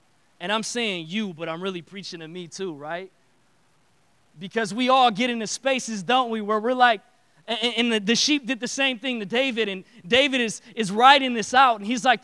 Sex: male